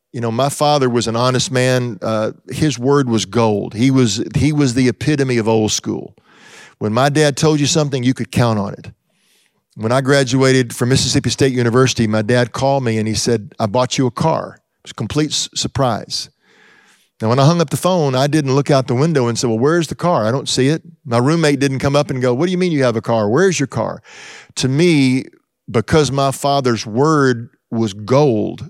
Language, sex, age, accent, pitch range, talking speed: English, male, 40-59, American, 115-140 Hz, 225 wpm